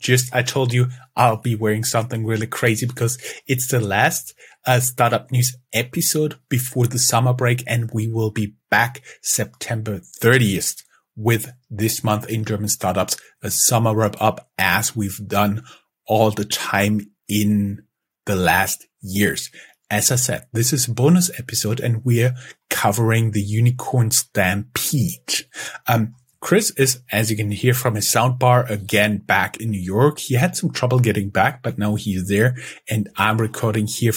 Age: 30-49